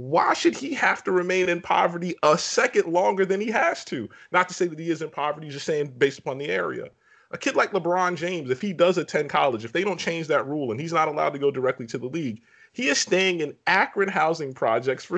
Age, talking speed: 30-49, 250 wpm